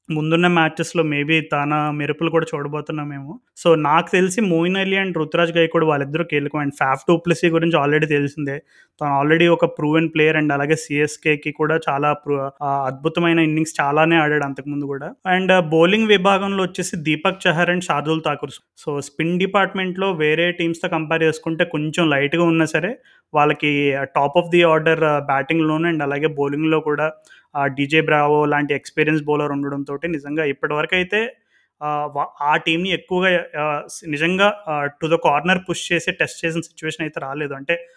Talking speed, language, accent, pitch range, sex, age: 155 wpm, Telugu, native, 150-170 Hz, male, 20-39